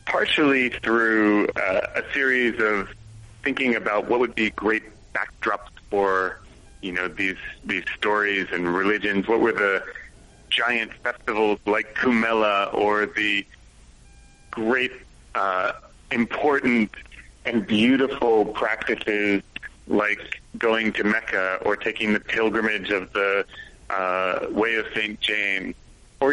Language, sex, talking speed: English, male, 120 wpm